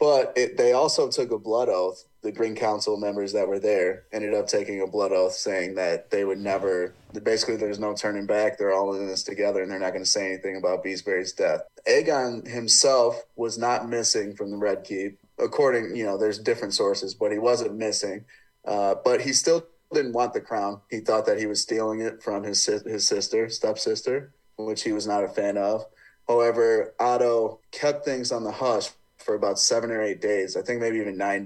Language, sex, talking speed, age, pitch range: English, male, 210 wpm, 30-49, 105-145 Hz